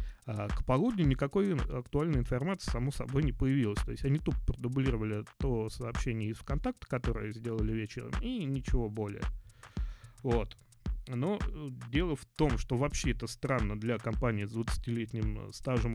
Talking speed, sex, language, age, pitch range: 145 wpm, male, Russian, 30-49, 110-140 Hz